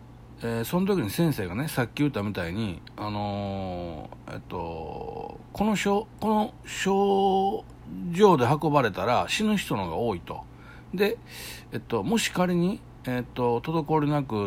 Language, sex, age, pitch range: Japanese, male, 60-79, 100-165 Hz